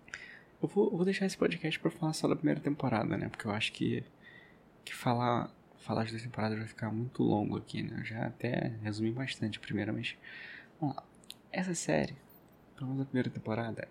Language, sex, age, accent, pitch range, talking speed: Portuguese, male, 20-39, Brazilian, 110-140 Hz, 200 wpm